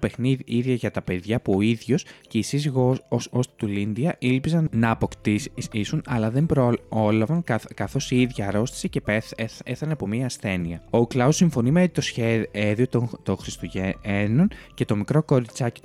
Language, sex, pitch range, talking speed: Greek, male, 105-135 Hz, 180 wpm